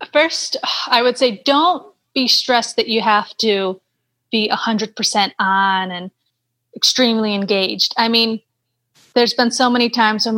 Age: 30-49